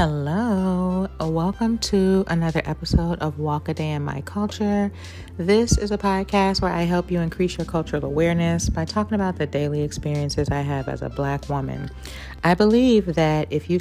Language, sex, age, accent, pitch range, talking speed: English, female, 40-59, American, 140-185 Hz, 180 wpm